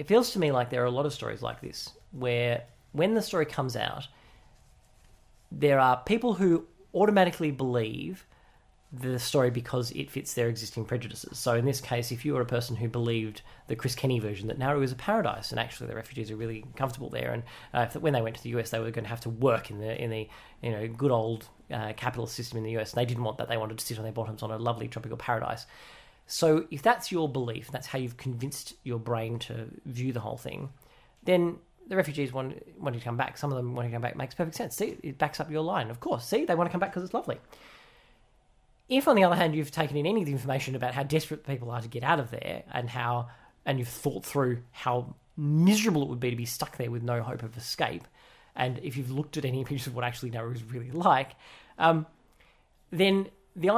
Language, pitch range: English, 120-150 Hz